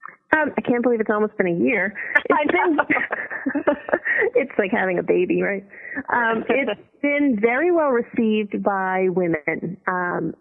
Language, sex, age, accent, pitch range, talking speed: English, female, 30-49, American, 175-225 Hz, 145 wpm